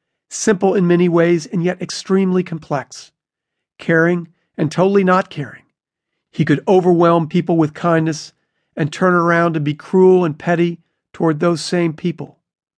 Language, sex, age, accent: English, male, 40-59, American